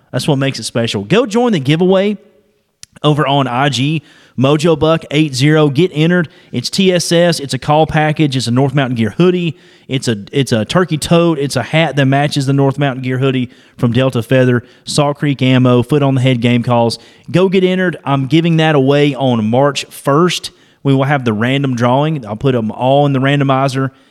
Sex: male